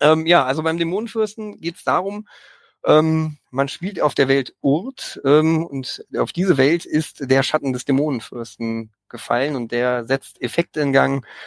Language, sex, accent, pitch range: German, male, German, 130-170 Hz